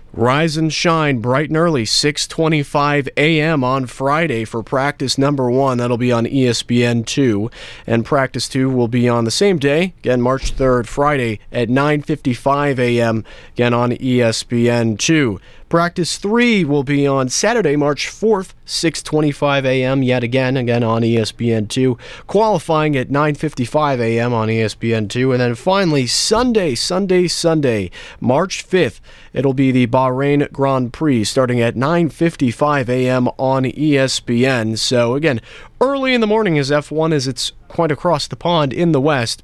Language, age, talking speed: English, 30-49, 145 wpm